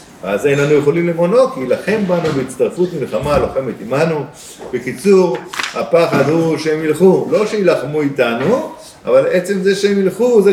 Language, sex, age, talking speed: Hebrew, male, 50-69, 150 wpm